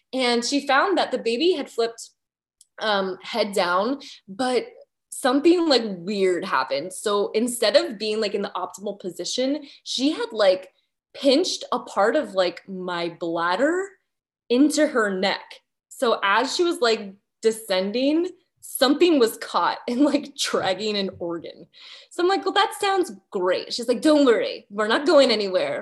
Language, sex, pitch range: English, female, 190-275 Hz